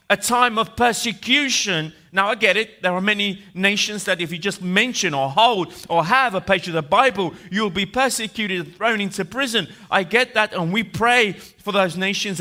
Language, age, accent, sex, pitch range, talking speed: Italian, 30-49, British, male, 175-215 Hz, 205 wpm